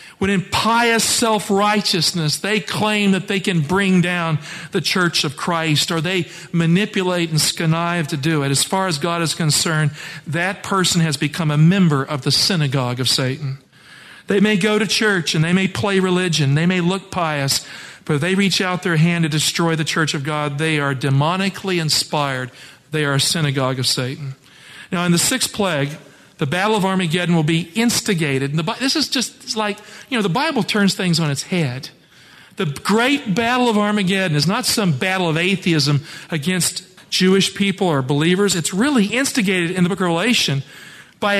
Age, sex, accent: 50-69, male, American